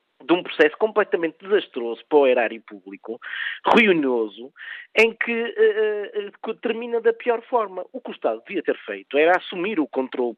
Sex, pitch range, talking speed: male, 165-235 Hz, 155 wpm